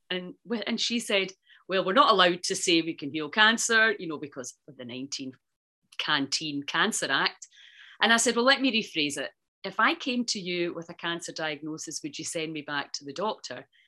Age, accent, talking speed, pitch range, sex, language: 40-59, British, 205 wpm, 140-180 Hz, female, English